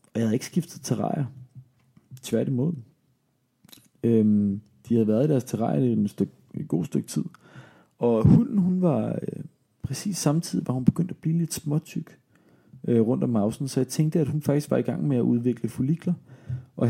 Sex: male